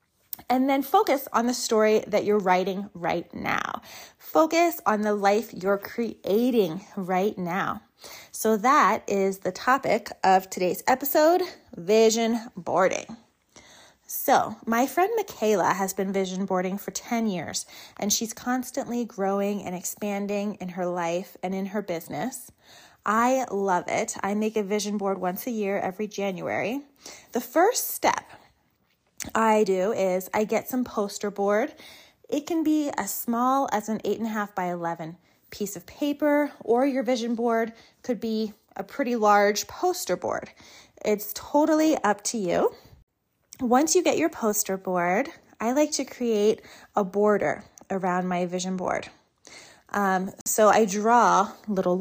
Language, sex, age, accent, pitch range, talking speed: English, female, 30-49, American, 195-250 Hz, 150 wpm